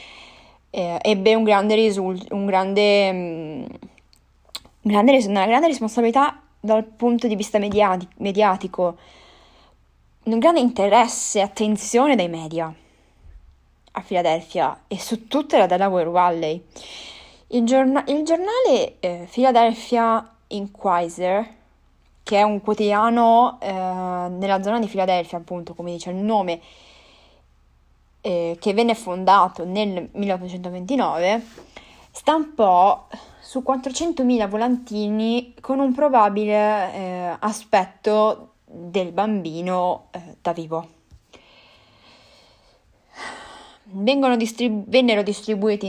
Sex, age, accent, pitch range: female, 20-39, Italian, 175-230 Hz